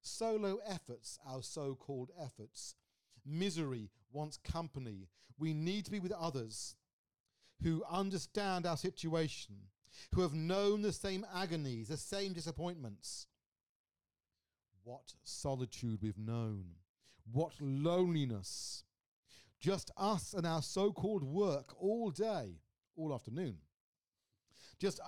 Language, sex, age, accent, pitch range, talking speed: English, male, 40-59, British, 115-185 Hz, 105 wpm